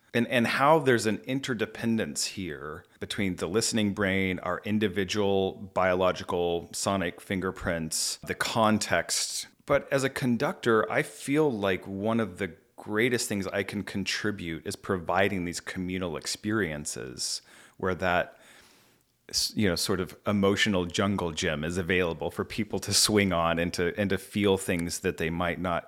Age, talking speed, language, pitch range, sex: 30-49, 150 wpm, English, 90-110 Hz, male